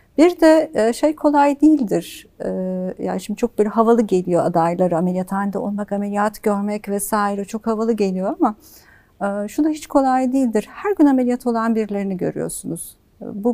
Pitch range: 195-255 Hz